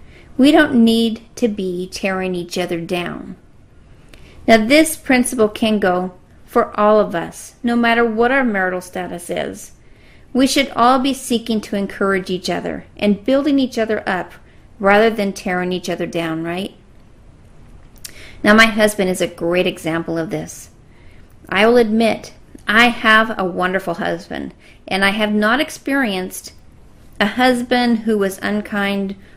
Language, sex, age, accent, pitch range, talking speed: English, female, 40-59, American, 180-230 Hz, 145 wpm